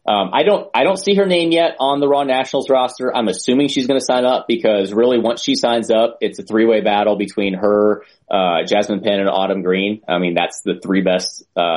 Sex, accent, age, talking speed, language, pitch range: male, American, 30-49, 235 wpm, English, 100-130 Hz